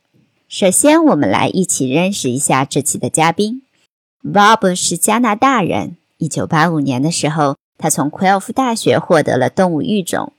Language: Chinese